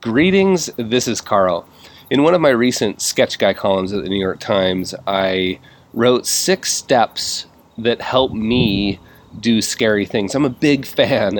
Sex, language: male, English